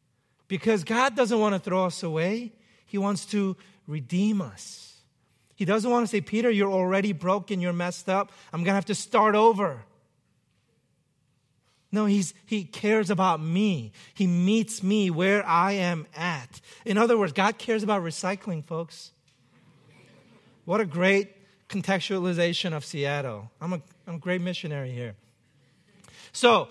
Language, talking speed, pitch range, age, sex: English, 145 wpm, 155-205 Hz, 40-59, male